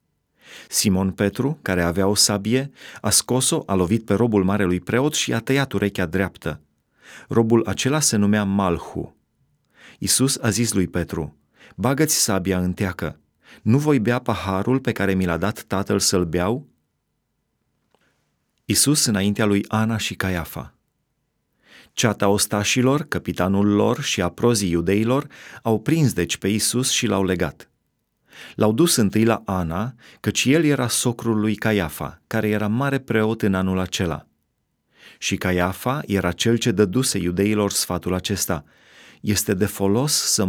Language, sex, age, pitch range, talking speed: Romanian, male, 30-49, 95-120 Hz, 145 wpm